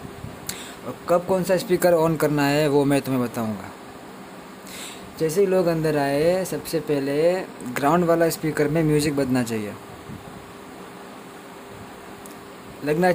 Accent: native